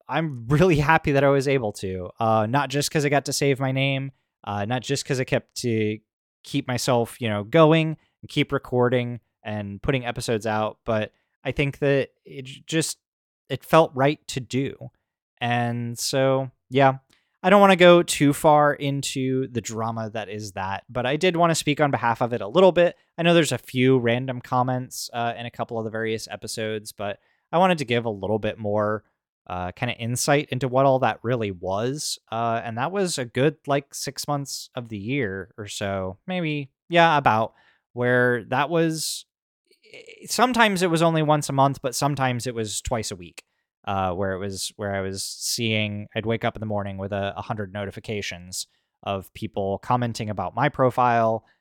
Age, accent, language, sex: 20-39, American, English, male